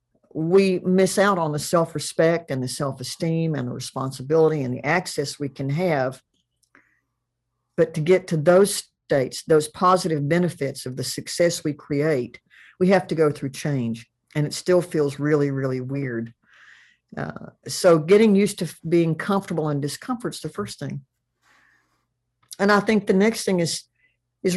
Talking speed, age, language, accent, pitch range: 160 wpm, 50-69, English, American, 140-175 Hz